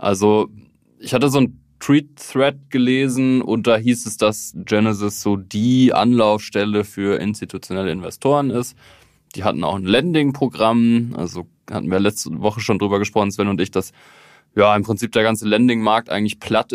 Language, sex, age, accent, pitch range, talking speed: German, male, 20-39, German, 100-115 Hz, 160 wpm